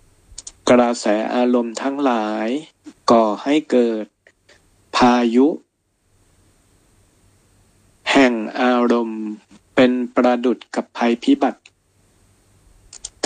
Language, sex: Thai, male